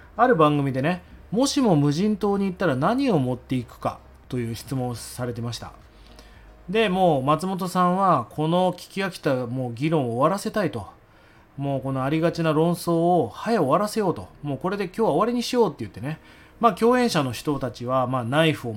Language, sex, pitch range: Japanese, male, 120-185 Hz